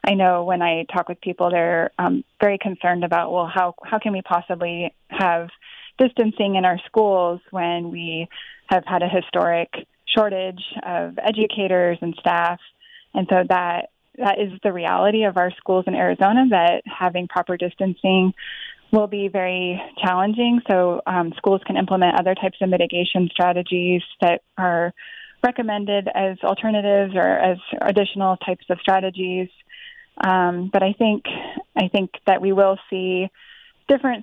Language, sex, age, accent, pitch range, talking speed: English, female, 20-39, American, 180-210 Hz, 150 wpm